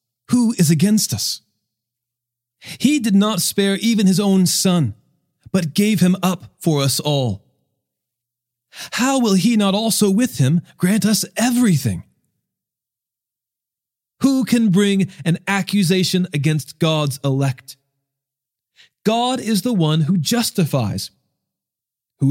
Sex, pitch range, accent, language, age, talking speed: male, 145-215 Hz, American, English, 40-59, 120 wpm